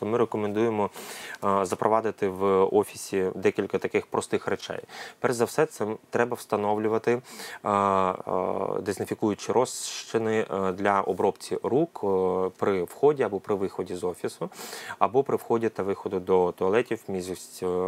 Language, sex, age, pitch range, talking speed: Ukrainian, male, 20-39, 95-110 Hz, 115 wpm